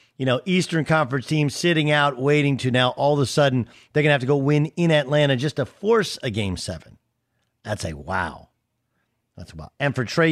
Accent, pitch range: American, 115-150 Hz